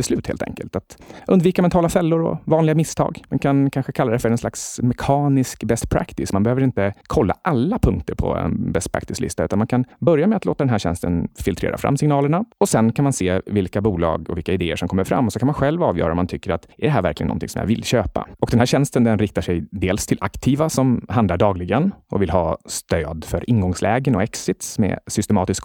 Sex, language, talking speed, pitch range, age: male, Swedish, 230 wpm, 95-140 Hz, 30-49